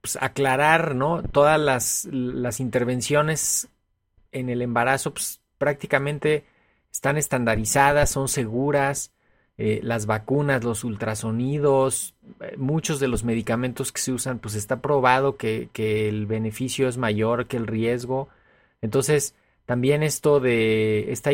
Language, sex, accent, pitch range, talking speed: Spanish, male, Mexican, 110-135 Hz, 130 wpm